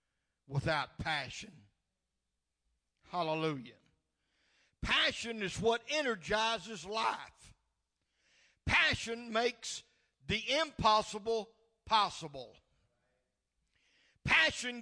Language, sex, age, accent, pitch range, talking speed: English, male, 60-79, American, 150-245 Hz, 55 wpm